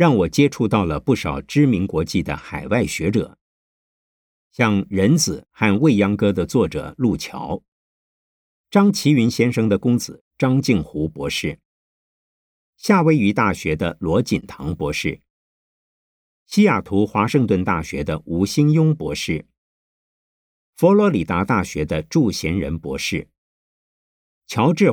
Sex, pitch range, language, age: male, 95-155 Hz, Chinese, 50-69